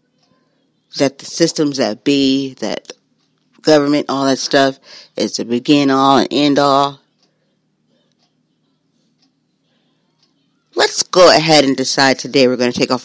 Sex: female